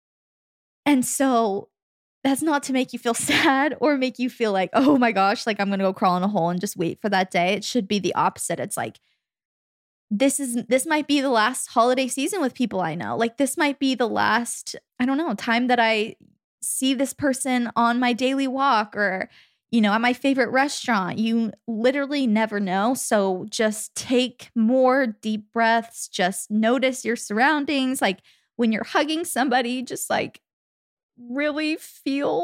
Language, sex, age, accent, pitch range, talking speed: English, female, 20-39, American, 215-270 Hz, 185 wpm